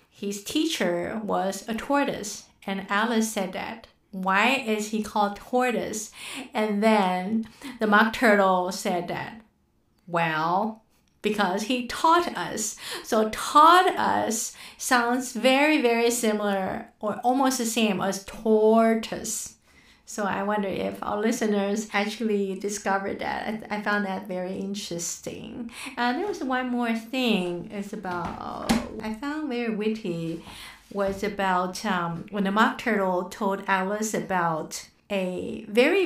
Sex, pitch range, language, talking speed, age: female, 195-235 Hz, English, 130 wpm, 50-69